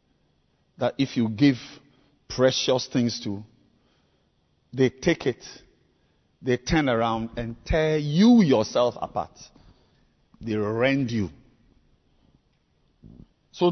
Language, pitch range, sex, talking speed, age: English, 115-155 Hz, male, 95 wpm, 50-69